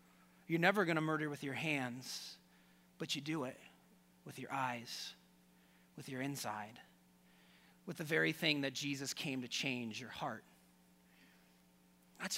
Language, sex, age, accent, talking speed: English, male, 30-49, American, 145 wpm